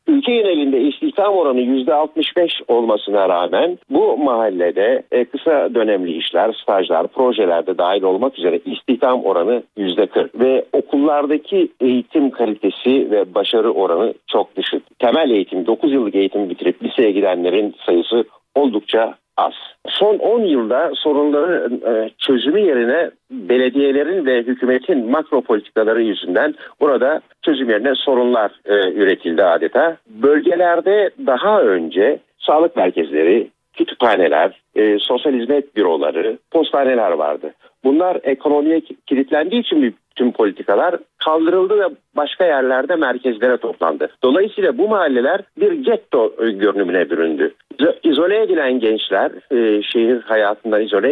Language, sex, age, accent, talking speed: Turkish, male, 50-69, native, 115 wpm